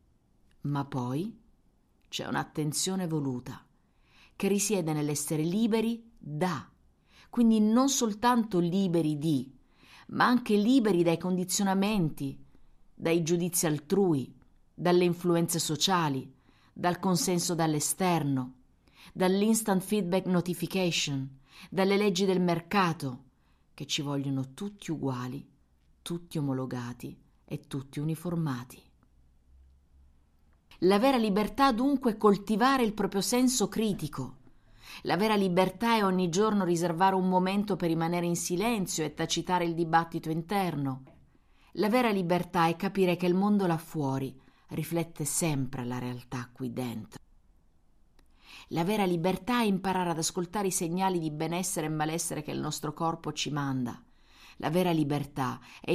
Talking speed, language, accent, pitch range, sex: 120 wpm, English, Italian, 135-190 Hz, female